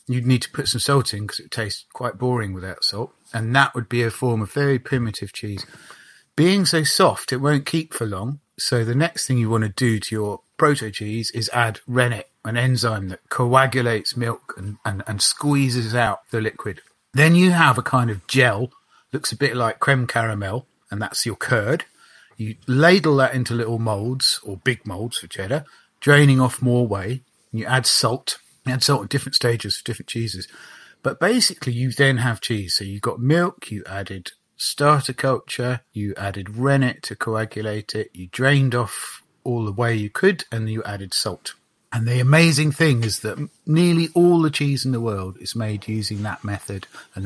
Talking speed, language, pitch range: 195 wpm, English, 110-135 Hz